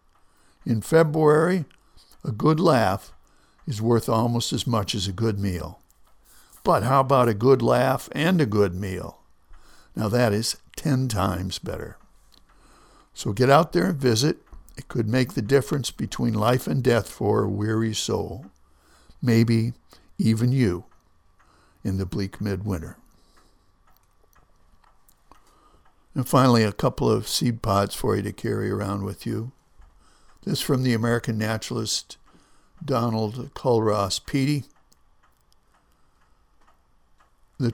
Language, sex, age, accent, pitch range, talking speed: English, male, 60-79, American, 100-130 Hz, 125 wpm